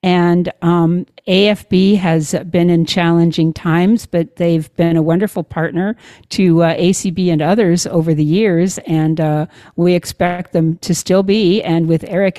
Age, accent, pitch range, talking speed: 50-69, American, 165-205 Hz, 160 wpm